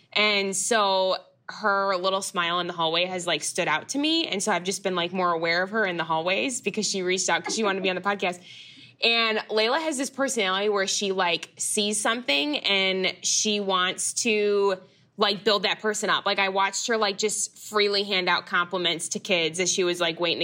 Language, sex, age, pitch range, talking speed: English, female, 10-29, 190-230 Hz, 220 wpm